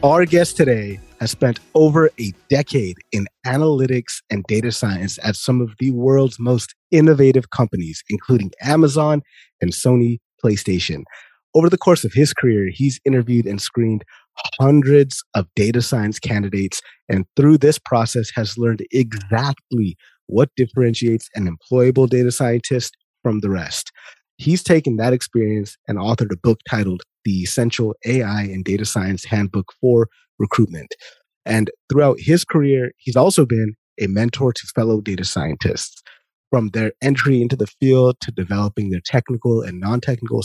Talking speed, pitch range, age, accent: 150 wpm, 105-130 Hz, 30-49, American